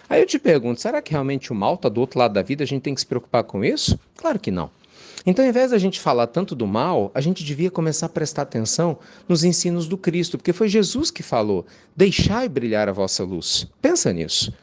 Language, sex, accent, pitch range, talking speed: Portuguese, male, Brazilian, 125-185 Hz, 240 wpm